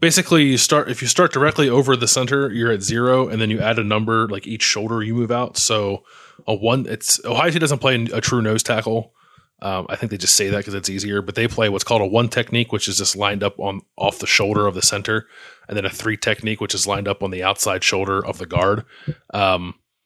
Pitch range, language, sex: 100-130 Hz, English, male